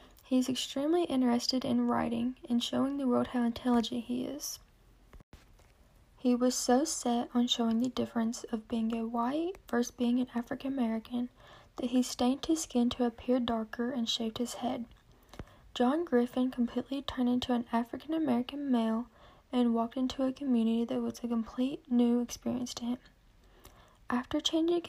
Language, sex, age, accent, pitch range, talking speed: English, female, 10-29, American, 235-265 Hz, 160 wpm